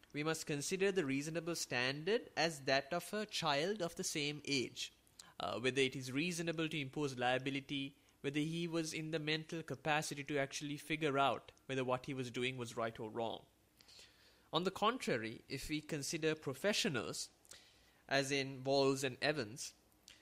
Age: 20-39